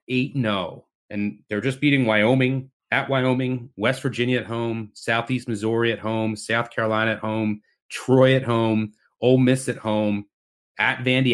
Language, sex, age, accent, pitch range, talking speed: English, male, 30-49, American, 100-125 Hz, 150 wpm